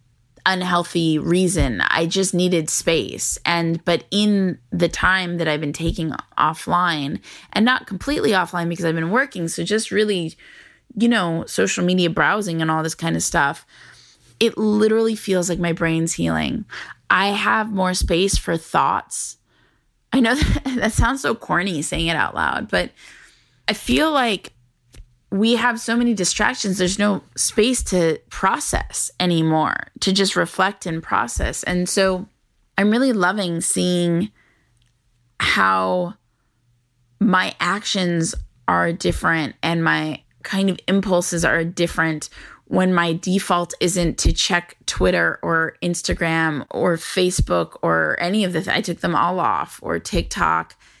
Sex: female